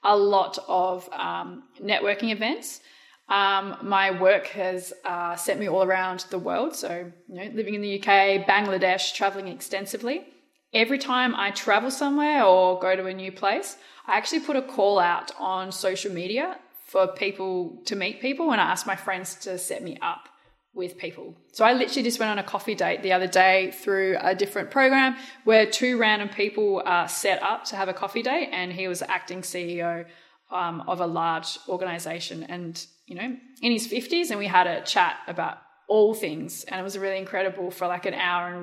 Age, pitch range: 20-39, 185-215 Hz